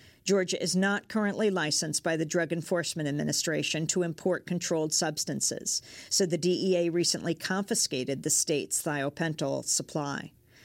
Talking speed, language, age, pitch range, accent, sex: 130 wpm, English, 50-69, 150-180 Hz, American, female